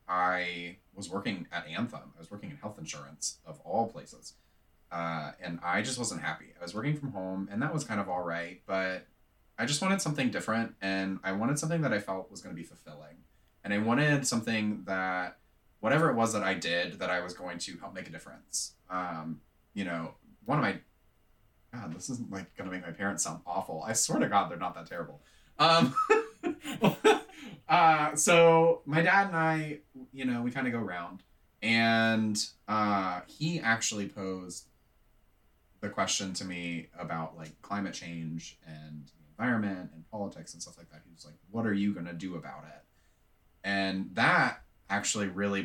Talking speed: 190 wpm